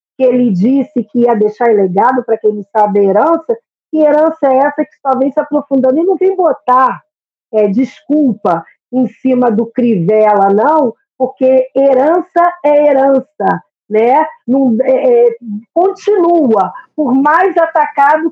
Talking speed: 145 wpm